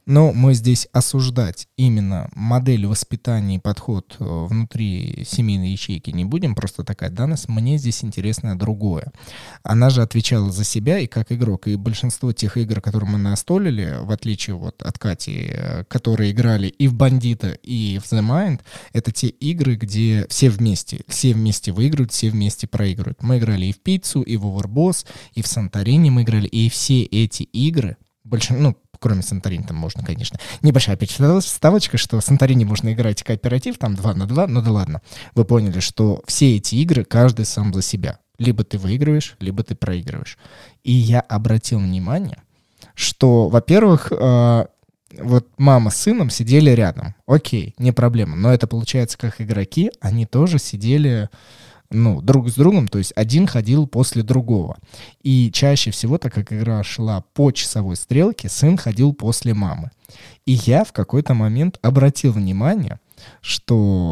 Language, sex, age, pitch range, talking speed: Russian, male, 20-39, 105-130 Hz, 165 wpm